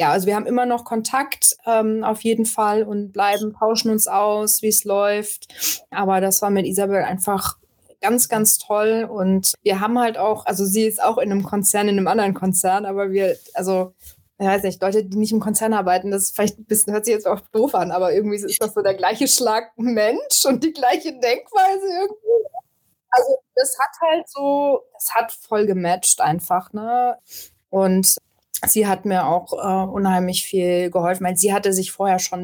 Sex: female